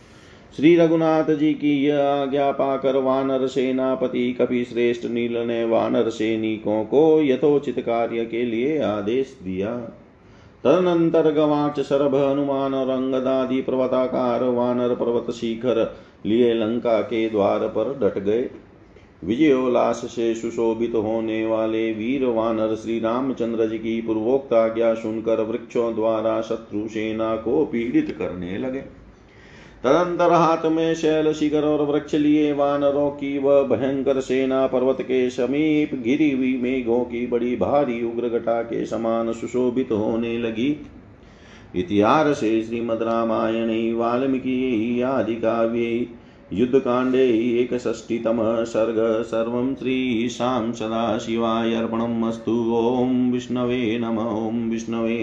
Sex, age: male, 40-59